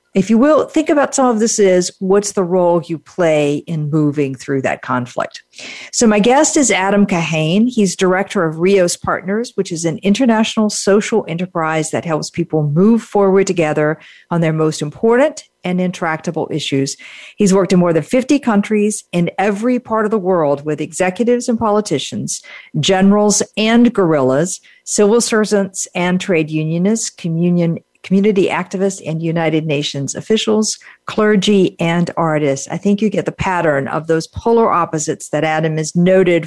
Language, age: English, 50-69